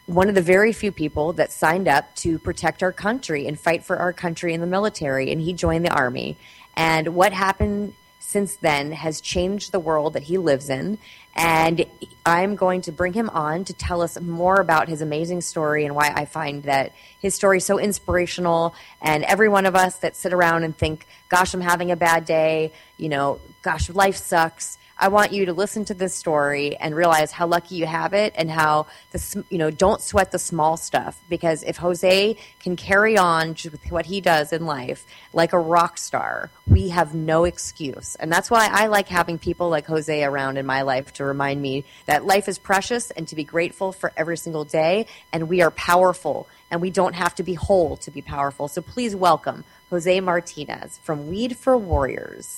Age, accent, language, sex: 30-49, American, English, female